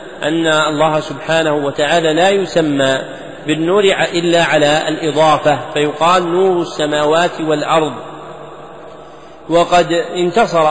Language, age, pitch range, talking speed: Arabic, 40-59, 150-165 Hz, 90 wpm